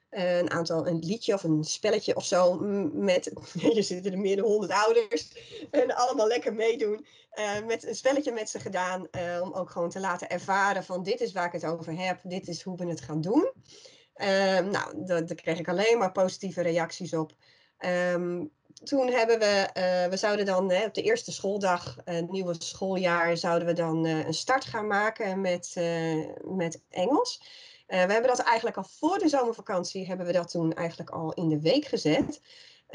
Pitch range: 170-215 Hz